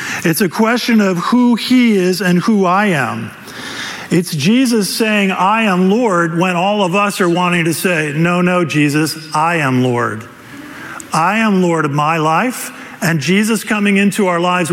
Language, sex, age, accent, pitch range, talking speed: English, male, 50-69, American, 155-205 Hz, 175 wpm